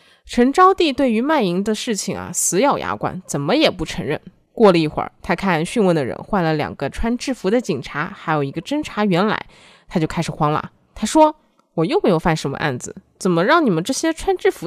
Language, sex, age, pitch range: Chinese, female, 20-39, 165-245 Hz